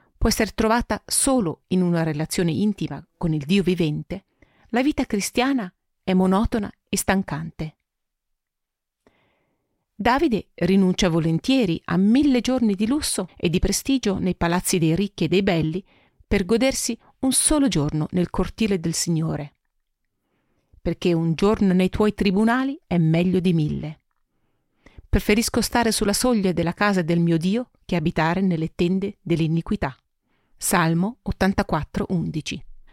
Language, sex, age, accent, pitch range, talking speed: Italian, female, 40-59, native, 165-215 Hz, 135 wpm